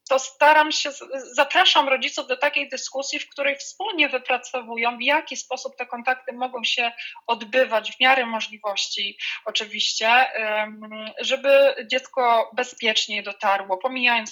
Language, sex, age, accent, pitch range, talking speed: Polish, female, 20-39, native, 215-250 Hz, 120 wpm